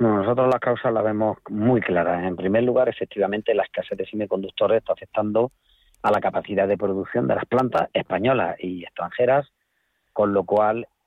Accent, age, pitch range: Spanish, 40-59, 95-120 Hz